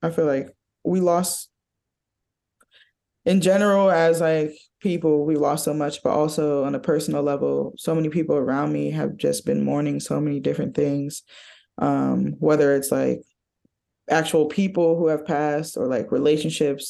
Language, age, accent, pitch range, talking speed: English, 20-39, American, 135-155 Hz, 160 wpm